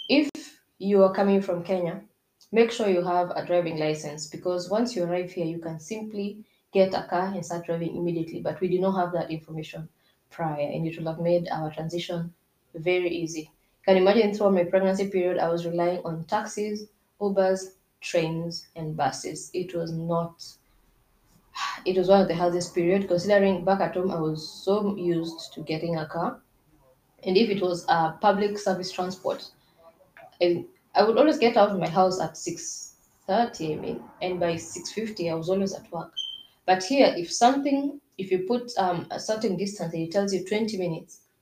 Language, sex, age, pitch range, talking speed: English, female, 20-39, 170-200 Hz, 185 wpm